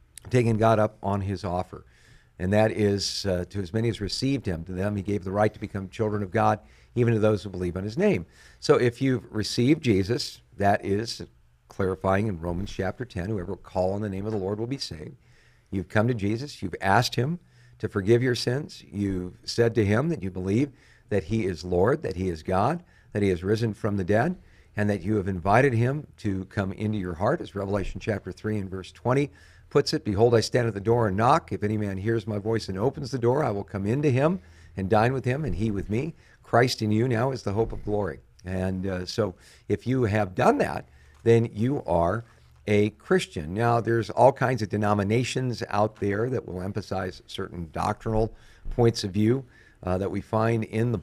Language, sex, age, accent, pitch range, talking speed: English, male, 50-69, American, 95-115 Hz, 220 wpm